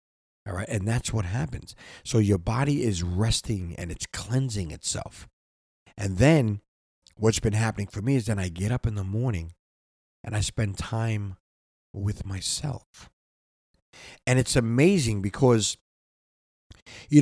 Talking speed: 145 wpm